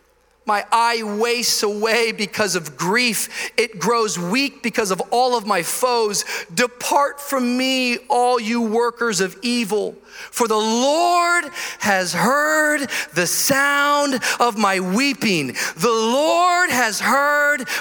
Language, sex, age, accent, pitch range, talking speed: English, male, 40-59, American, 210-305 Hz, 130 wpm